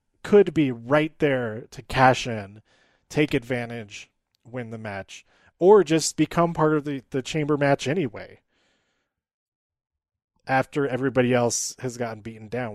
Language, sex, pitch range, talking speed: English, male, 110-145 Hz, 135 wpm